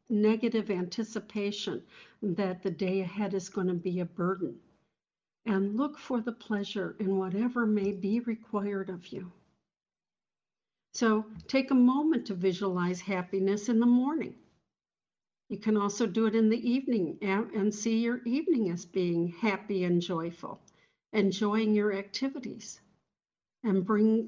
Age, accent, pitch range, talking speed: 60-79, American, 195-225 Hz, 140 wpm